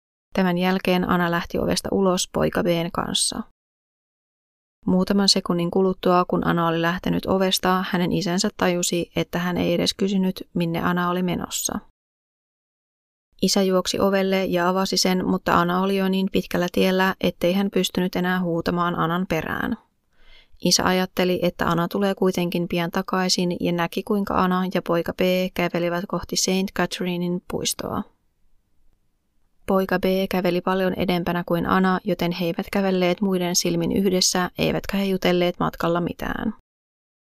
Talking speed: 140 wpm